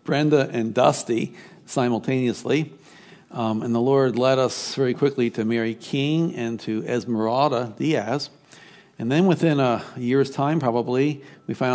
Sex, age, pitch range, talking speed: male, 60-79, 120-160 Hz, 145 wpm